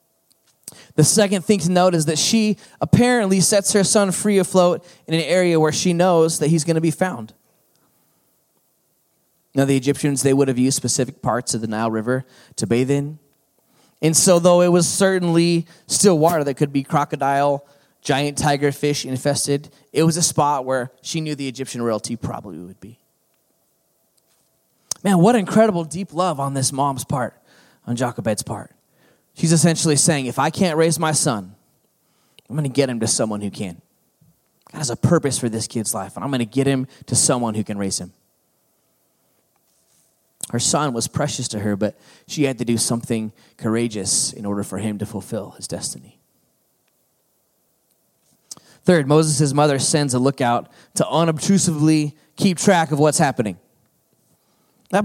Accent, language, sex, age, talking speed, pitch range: American, English, male, 20-39, 170 wpm, 125-170 Hz